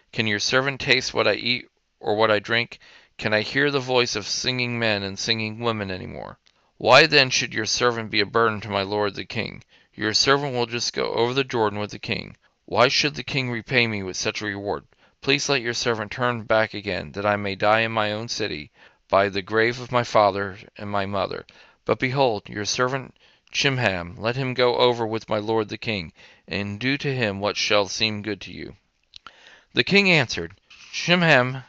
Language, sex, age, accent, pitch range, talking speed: English, male, 40-59, American, 105-125 Hz, 210 wpm